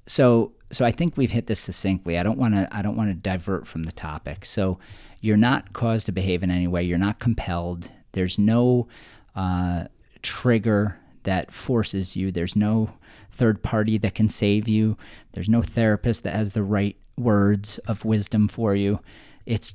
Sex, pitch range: male, 90-115 Hz